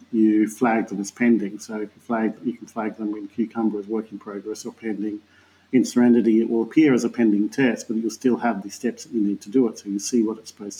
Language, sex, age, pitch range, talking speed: English, male, 50-69, 105-125 Hz, 255 wpm